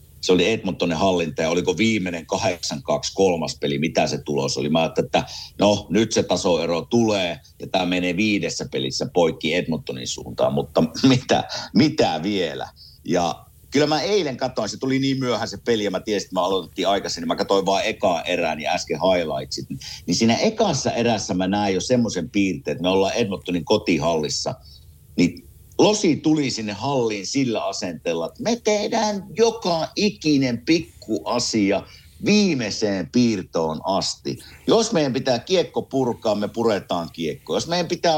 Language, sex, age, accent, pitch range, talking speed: Finnish, male, 50-69, native, 95-145 Hz, 160 wpm